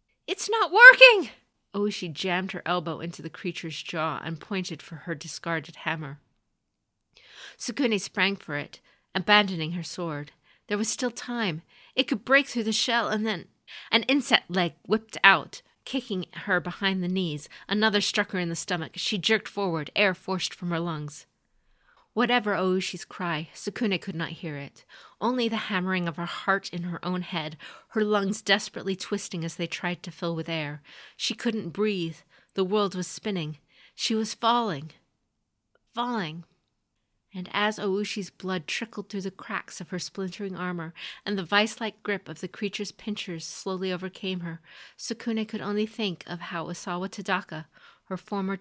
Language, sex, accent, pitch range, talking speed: English, female, American, 170-210 Hz, 165 wpm